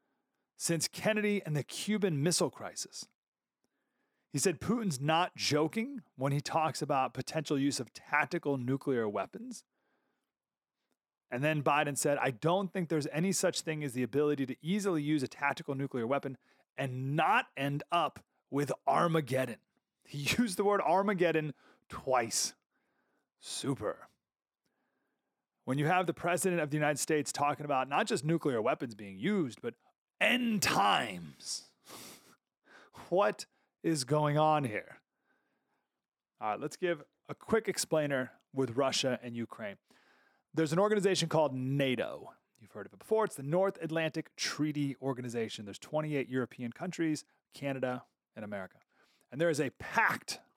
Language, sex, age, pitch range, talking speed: English, male, 30-49, 135-175 Hz, 140 wpm